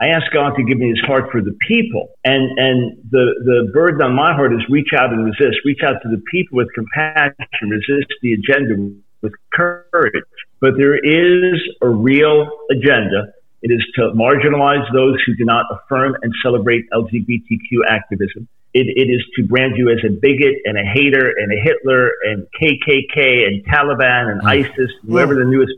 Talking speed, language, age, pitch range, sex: 185 wpm, English, 50-69, 115-140 Hz, male